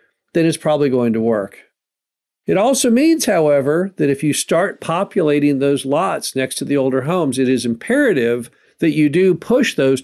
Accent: American